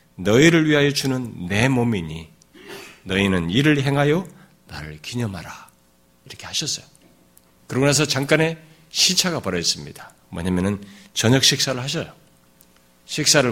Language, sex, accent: Korean, male, native